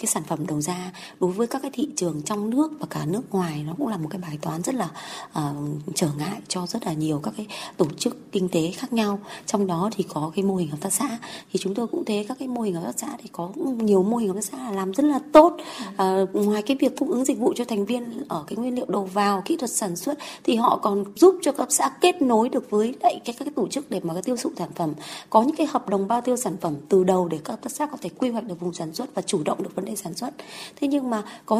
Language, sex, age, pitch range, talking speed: Vietnamese, female, 20-39, 190-275 Hz, 300 wpm